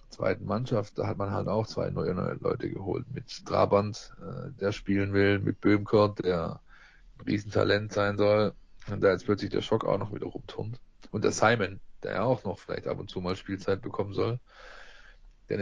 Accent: German